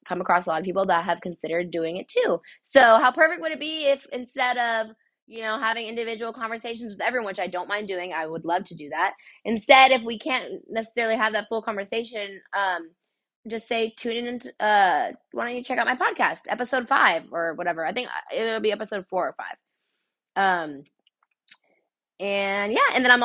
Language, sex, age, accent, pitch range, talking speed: English, female, 20-39, American, 170-230 Hz, 205 wpm